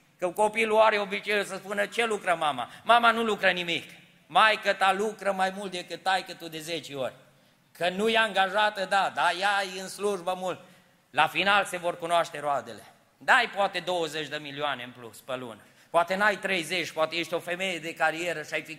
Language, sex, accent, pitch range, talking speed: Romanian, male, native, 165-225 Hz, 200 wpm